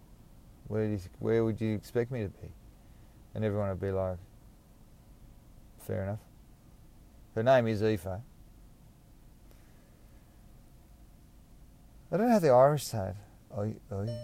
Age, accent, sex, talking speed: 40-59, Australian, male, 120 wpm